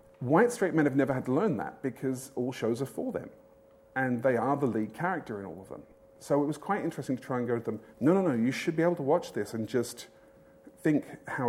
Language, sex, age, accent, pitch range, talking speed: English, male, 40-59, British, 110-140 Hz, 260 wpm